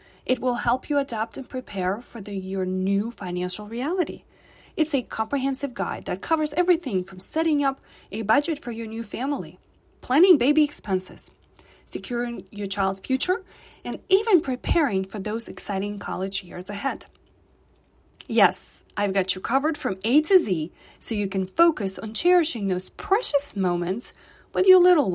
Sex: female